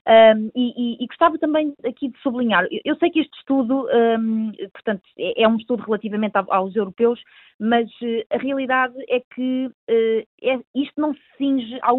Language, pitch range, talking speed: Portuguese, 205-260 Hz, 165 wpm